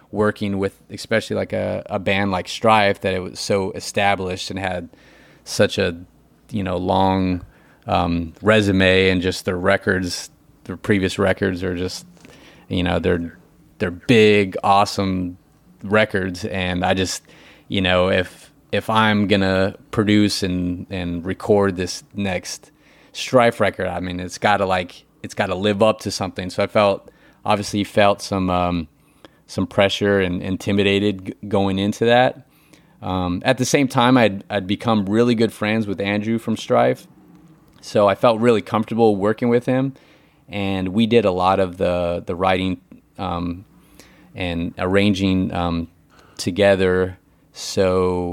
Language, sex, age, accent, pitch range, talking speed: English, male, 30-49, American, 90-105 Hz, 150 wpm